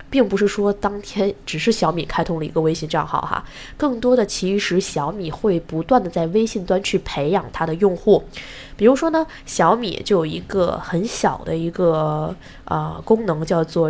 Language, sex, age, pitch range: Chinese, female, 20-39, 165-210 Hz